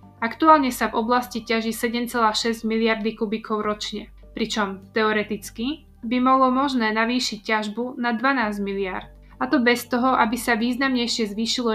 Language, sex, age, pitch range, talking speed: Slovak, female, 20-39, 220-250 Hz, 140 wpm